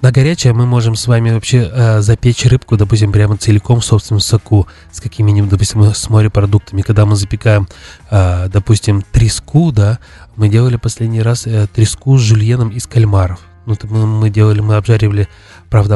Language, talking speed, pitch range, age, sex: Russian, 175 wpm, 105-120 Hz, 20-39, male